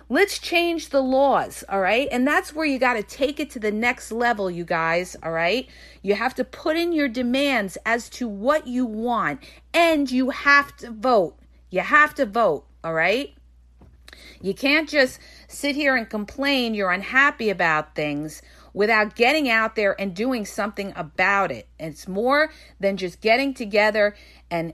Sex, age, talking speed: female, 40-59, 170 wpm